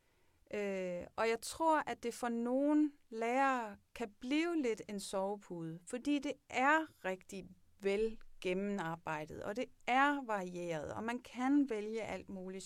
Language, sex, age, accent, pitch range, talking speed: Danish, female, 30-49, native, 185-245 Hz, 140 wpm